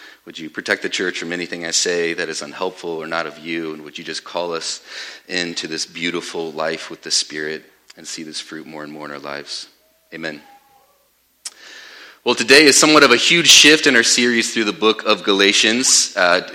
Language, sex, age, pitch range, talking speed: English, male, 30-49, 100-135 Hz, 205 wpm